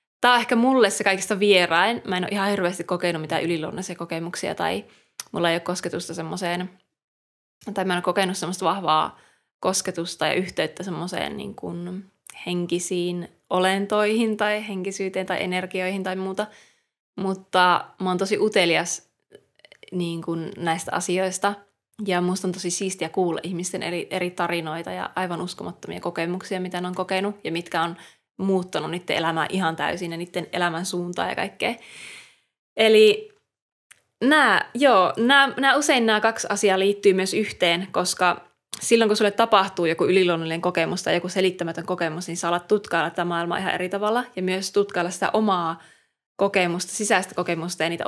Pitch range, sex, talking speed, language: 175-200 Hz, female, 155 wpm, Finnish